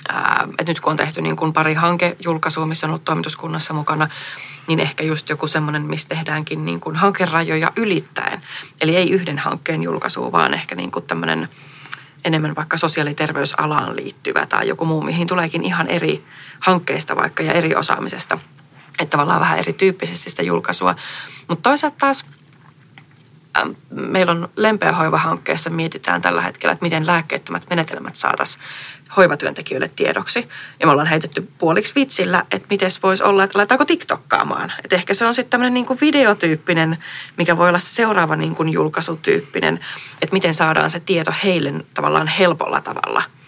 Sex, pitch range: female, 155-185 Hz